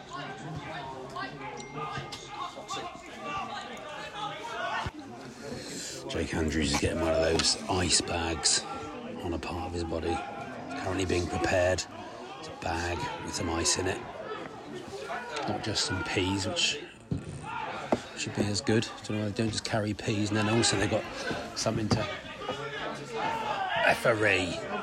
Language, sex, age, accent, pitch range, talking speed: English, male, 40-59, British, 100-125 Hz, 120 wpm